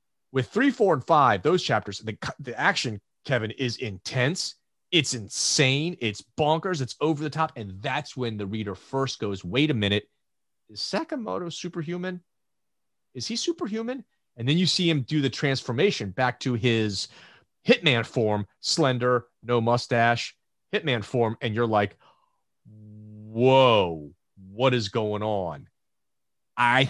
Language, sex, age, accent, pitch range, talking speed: English, male, 30-49, American, 110-155 Hz, 145 wpm